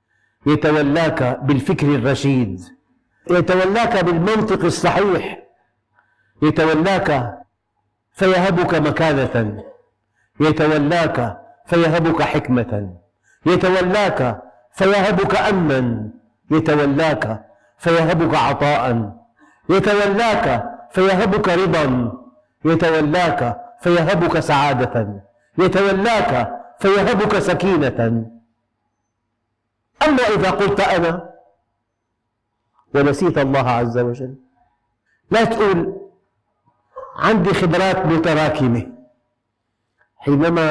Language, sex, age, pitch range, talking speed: Arabic, male, 50-69, 120-175 Hz, 60 wpm